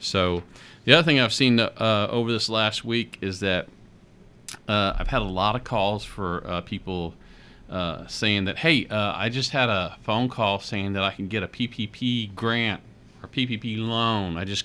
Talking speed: 195 wpm